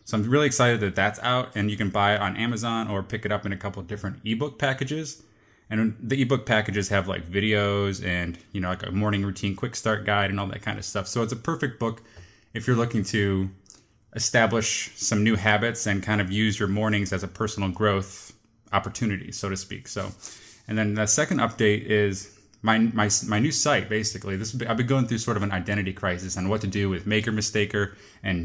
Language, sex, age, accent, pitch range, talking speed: English, male, 20-39, American, 100-110 Hz, 230 wpm